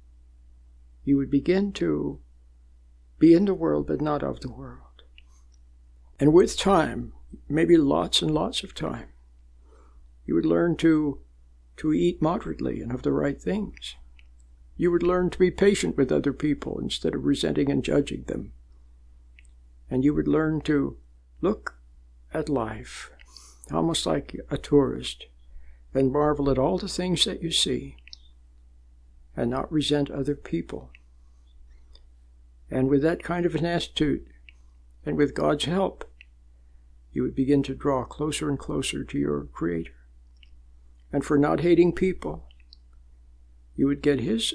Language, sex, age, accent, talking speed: English, male, 60-79, American, 145 wpm